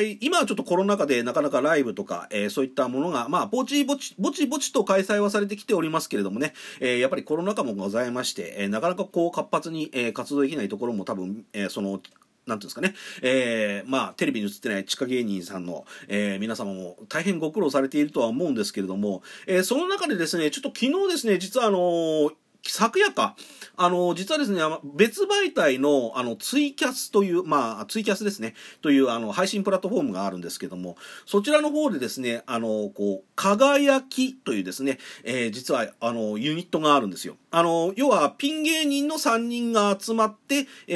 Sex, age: male, 40-59